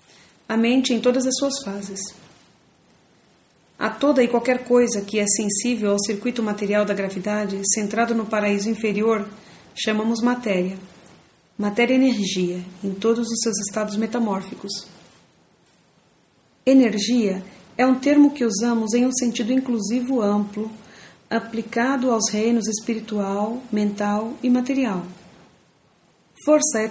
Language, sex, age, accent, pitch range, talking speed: English, female, 40-59, Brazilian, 205-245 Hz, 125 wpm